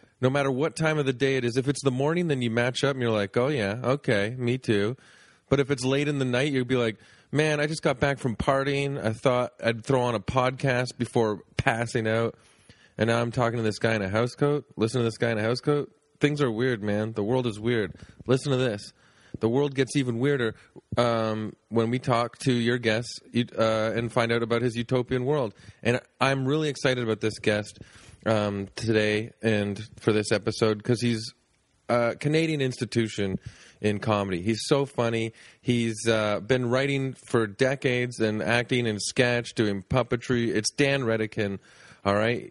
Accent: American